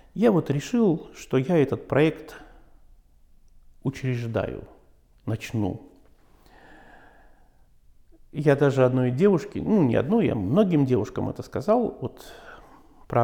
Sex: male